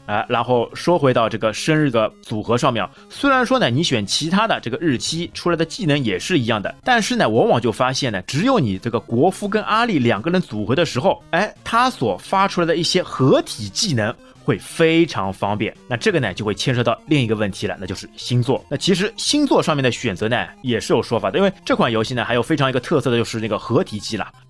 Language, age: Chinese, 30-49